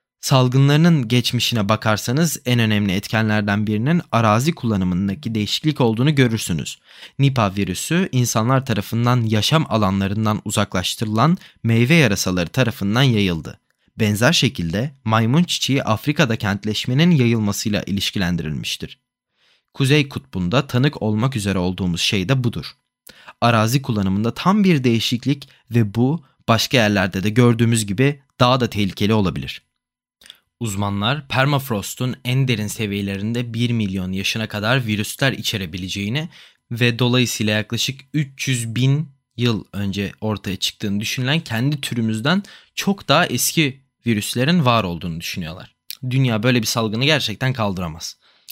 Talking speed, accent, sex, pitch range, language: 115 wpm, native, male, 105-130 Hz, Turkish